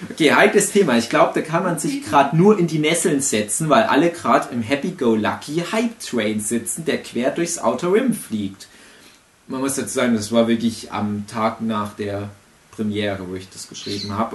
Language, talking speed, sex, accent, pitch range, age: German, 190 wpm, male, German, 120-195 Hz, 30-49